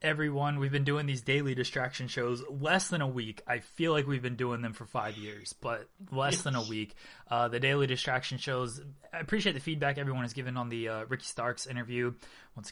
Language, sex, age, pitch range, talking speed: English, male, 20-39, 120-140 Hz, 215 wpm